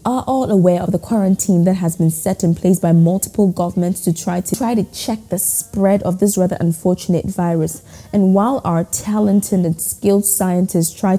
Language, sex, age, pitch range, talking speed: English, female, 20-39, 170-215 Hz, 195 wpm